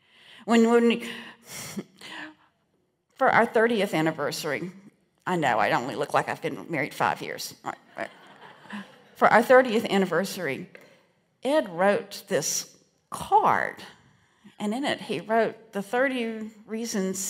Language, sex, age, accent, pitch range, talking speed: English, female, 50-69, American, 185-240 Hz, 110 wpm